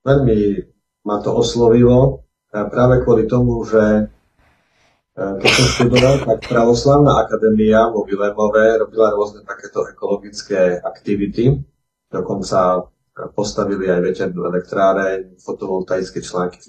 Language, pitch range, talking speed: Slovak, 100-115 Hz, 105 wpm